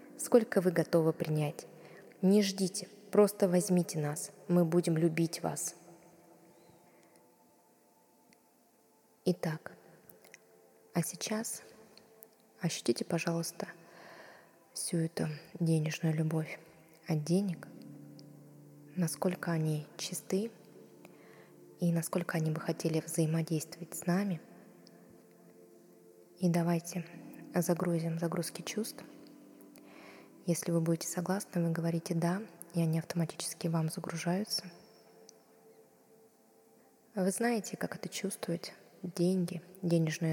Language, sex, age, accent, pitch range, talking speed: Russian, female, 20-39, native, 165-180 Hz, 90 wpm